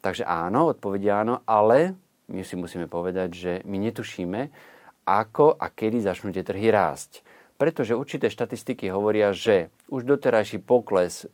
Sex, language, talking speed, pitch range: male, Slovak, 145 wpm, 95-120 Hz